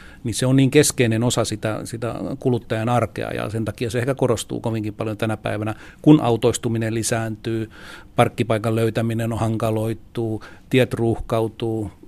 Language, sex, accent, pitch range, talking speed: Finnish, male, native, 110-125 Hz, 145 wpm